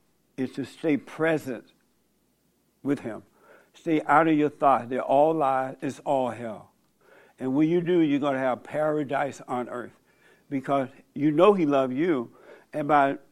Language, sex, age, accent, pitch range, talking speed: English, male, 60-79, American, 135-170 Hz, 160 wpm